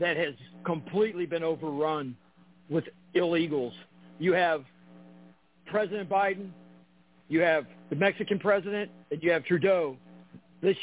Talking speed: 115 wpm